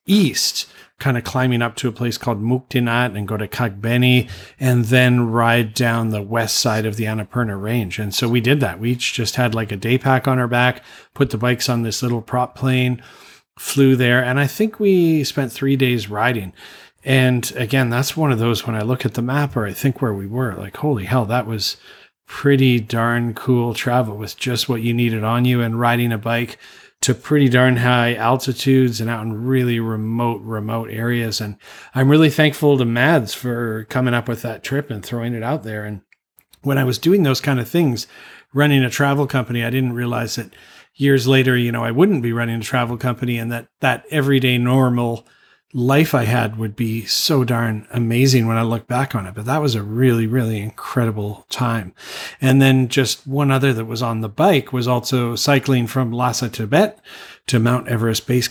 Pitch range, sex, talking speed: 115-130 Hz, male, 205 wpm